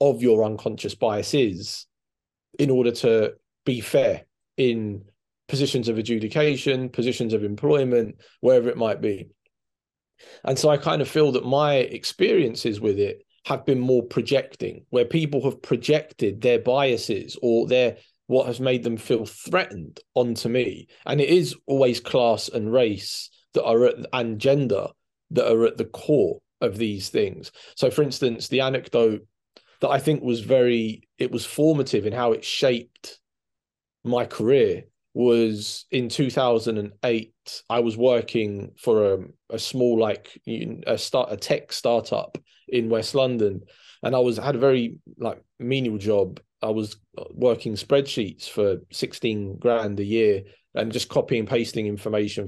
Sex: male